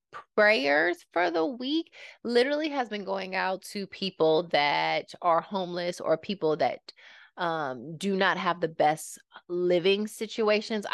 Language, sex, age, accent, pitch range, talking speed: English, female, 20-39, American, 140-180 Hz, 135 wpm